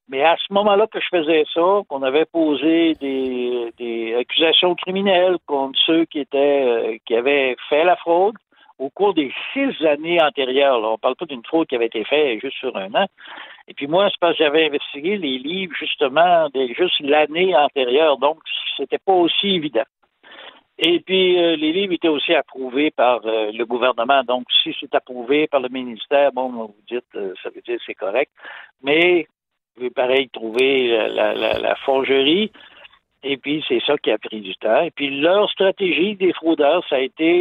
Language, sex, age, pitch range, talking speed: French, male, 60-79, 130-180 Hz, 185 wpm